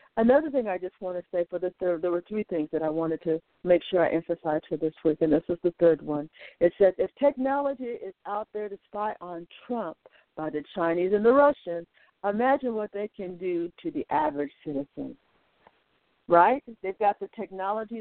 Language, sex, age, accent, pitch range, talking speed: English, female, 60-79, American, 165-225 Hz, 205 wpm